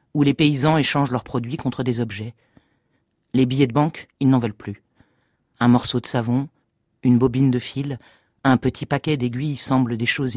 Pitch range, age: 125-145 Hz, 40-59